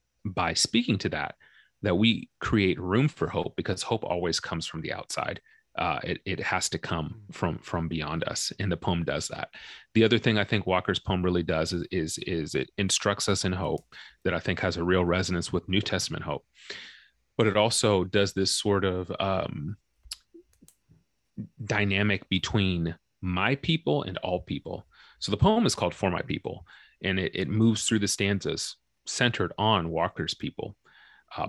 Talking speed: 180 wpm